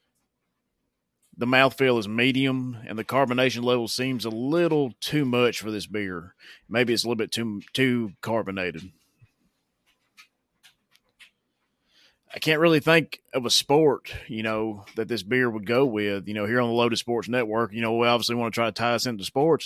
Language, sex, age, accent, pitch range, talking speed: English, male, 30-49, American, 110-135 Hz, 180 wpm